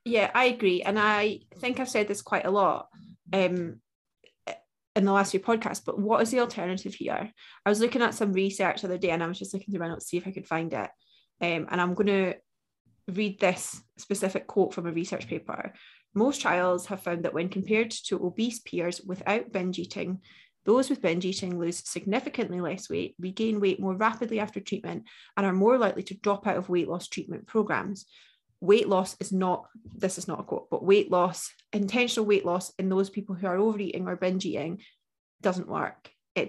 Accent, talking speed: British, 210 wpm